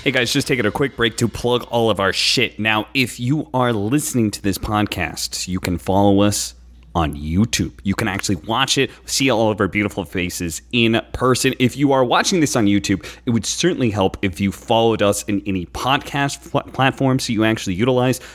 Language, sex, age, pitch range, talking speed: English, male, 30-49, 95-135 Hz, 210 wpm